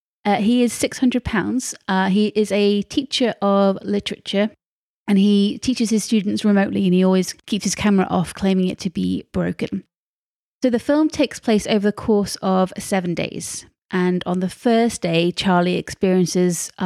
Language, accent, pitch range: English, British, 180-215 Hz